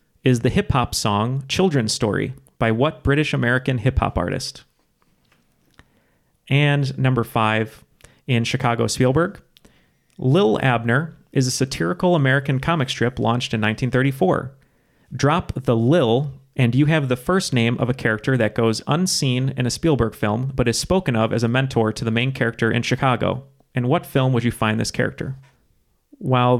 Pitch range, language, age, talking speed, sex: 115-140 Hz, English, 30-49, 155 wpm, male